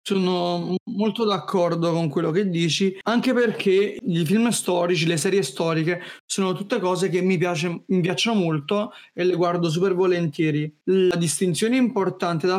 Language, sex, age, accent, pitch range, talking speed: Italian, male, 30-49, native, 175-200 Hz, 155 wpm